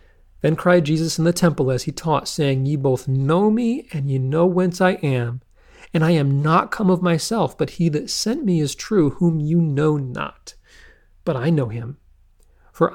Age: 40-59